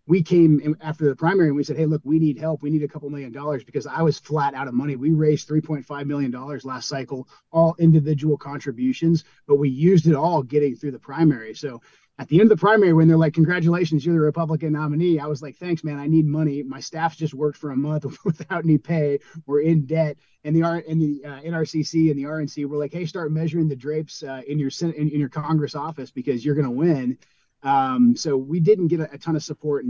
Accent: American